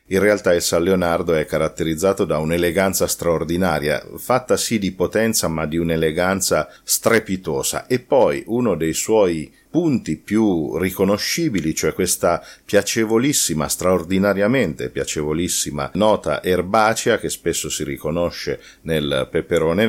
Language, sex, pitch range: Italian, male, 80-105 Hz